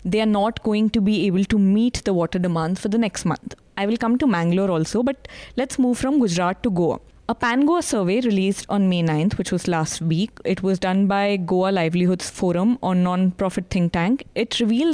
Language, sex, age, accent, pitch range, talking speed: English, female, 20-39, Indian, 185-235 Hz, 215 wpm